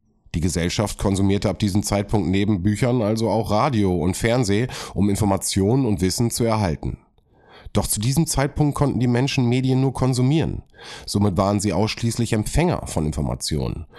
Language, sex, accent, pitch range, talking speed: German, male, German, 85-120 Hz, 155 wpm